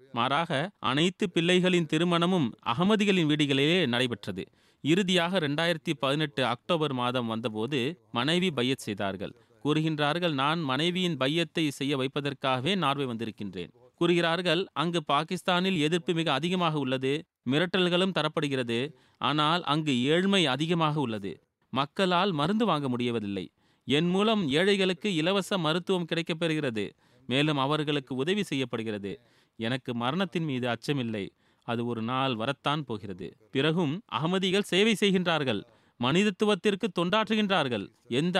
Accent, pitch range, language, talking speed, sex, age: native, 125-175 Hz, Tamil, 105 wpm, male, 30-49